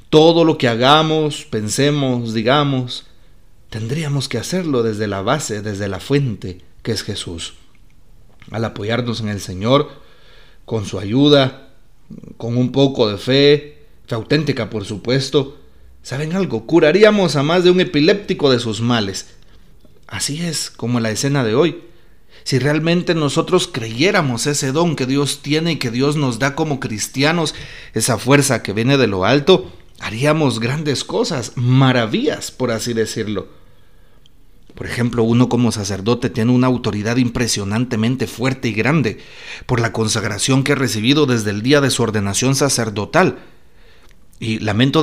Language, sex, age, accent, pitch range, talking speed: Spanish, male, 40-59, Mexican, 110-145 Hz, 150 wpm